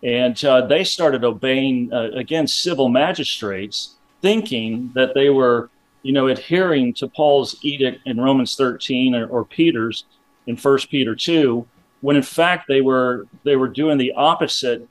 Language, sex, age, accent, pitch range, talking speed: English, male, 40-59, American, 125-160 Hz, 155 wpm